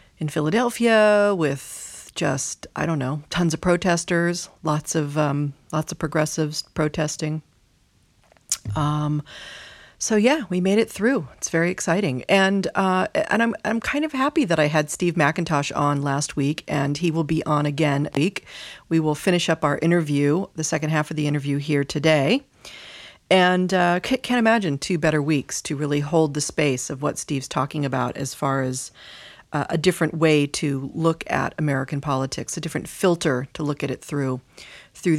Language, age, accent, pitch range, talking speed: English, 40-59, American, 145-175 Hz, 175 wpm